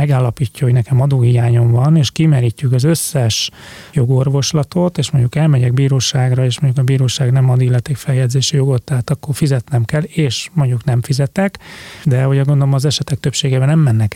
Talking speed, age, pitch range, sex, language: 165 wpm, 30-49, 130-150 Hz, male, Hungarian